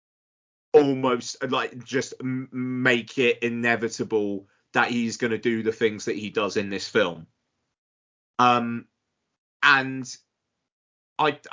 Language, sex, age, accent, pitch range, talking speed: English, male, 30-49, British, 110-130 Hz, 110 wpm